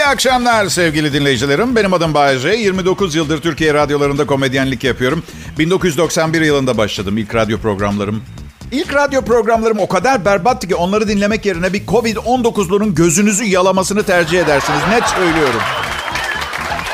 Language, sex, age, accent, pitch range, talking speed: Turkish, male, 50-69, native, 145-195 Hz, 130 wpm